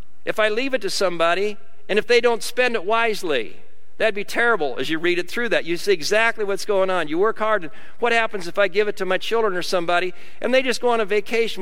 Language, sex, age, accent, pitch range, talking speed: English, male, 50-69, American, 150-205 Hz, 255 wpm